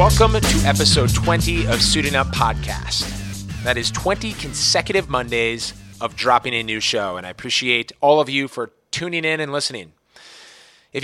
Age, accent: 30-49, American